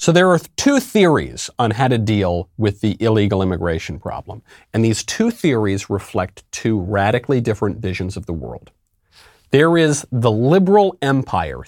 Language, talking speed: English, 160 wpm